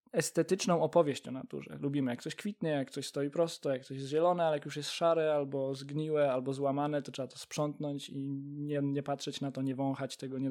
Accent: native